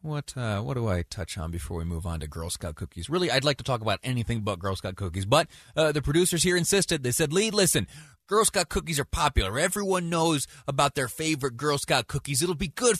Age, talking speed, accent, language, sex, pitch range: 30-49, 240 wpm, American, English, male, 105-155 Hz